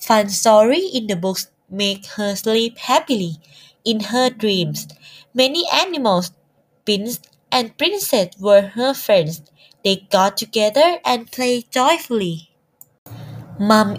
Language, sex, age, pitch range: Thai, female, 20-39, 185-250 Hz